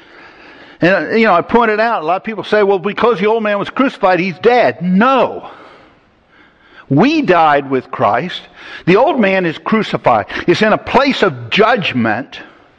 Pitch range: 200-290 Hz